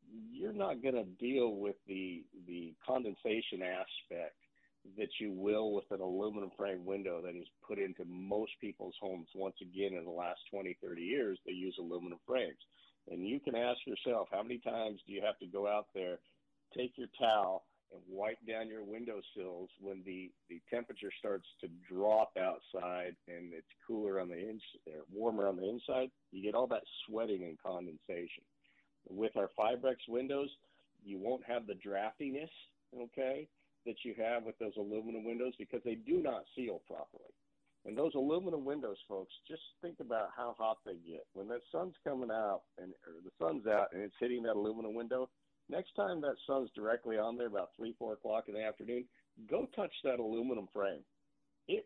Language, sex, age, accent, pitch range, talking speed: English, male, 50-69, American, 95-125 Hz, 180 wpm